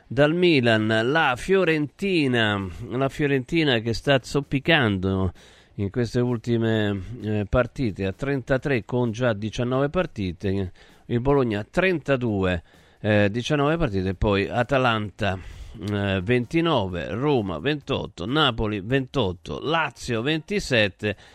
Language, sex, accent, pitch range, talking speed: Italian, male, native, 105-135 Hz, 100 wpm